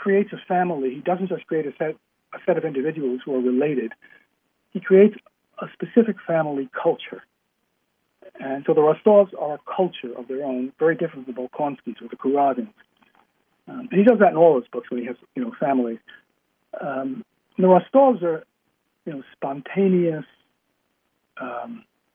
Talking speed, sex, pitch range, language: 170 wpm, male, 130-190 Hz, English